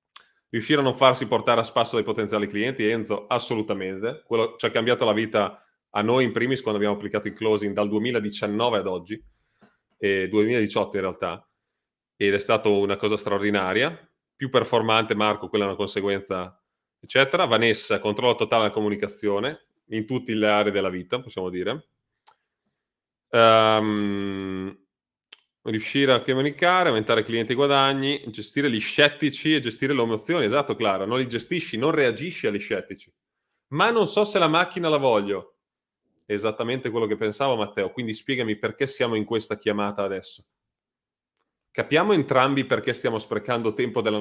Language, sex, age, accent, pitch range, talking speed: Italian, male, 30-49, native, 105-130 Hz, 155 wpm